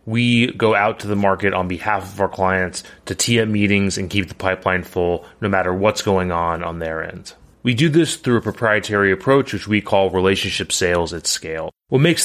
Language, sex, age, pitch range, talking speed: English, male, 30-49, 95-120 Hz, 210 wpm